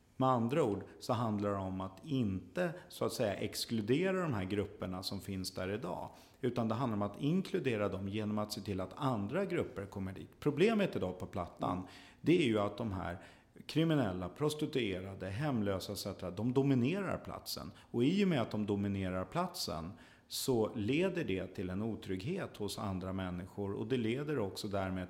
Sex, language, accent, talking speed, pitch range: male, Swedish, native, 180 wpm, 95-130 Hz